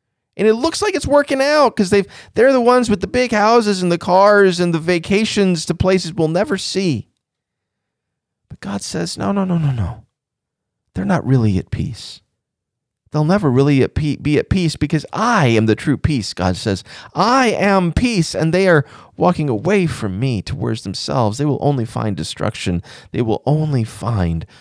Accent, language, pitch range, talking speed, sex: American, English, 105-155 Hz, 185 wpm, male